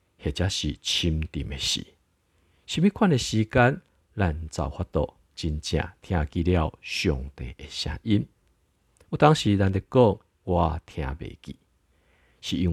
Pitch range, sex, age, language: 80-110 Hz, male, 50-69, Chinese